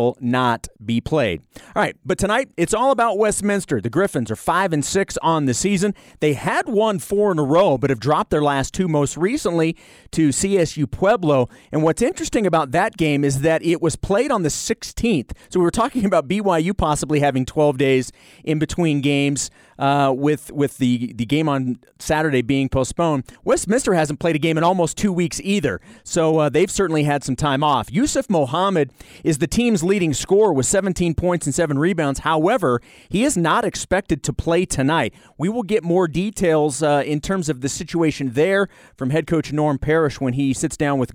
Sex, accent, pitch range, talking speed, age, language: male, American, 140-190 Hz, 200 wpm, 40-59, English